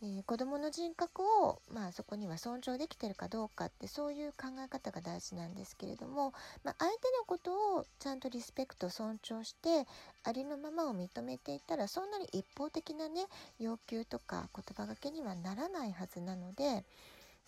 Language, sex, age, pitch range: Japanese, female, 40-59, 210-315 Hz